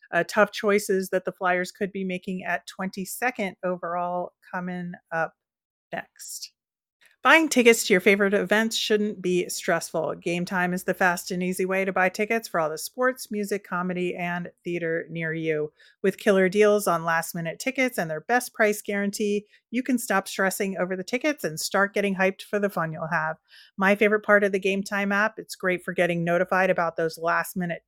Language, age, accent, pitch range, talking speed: English, 30-49, American, 175-210 Hz, 195 wpm